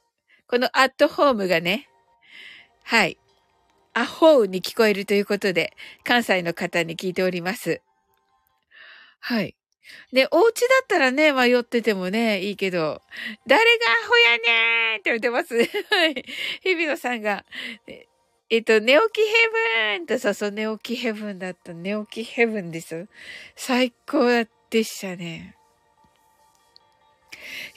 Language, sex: Japanese, female